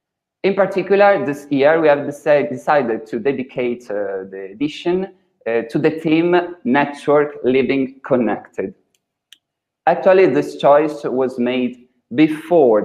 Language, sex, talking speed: English, male, 115 wpm